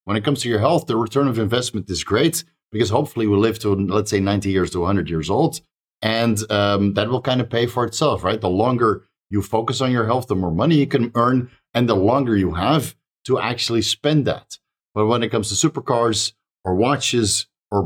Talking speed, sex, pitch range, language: 220 wpm, male, 100-125 Hz, English